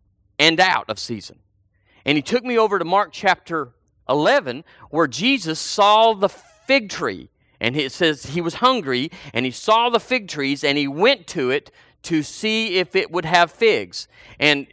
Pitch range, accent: 140-195 Hz, American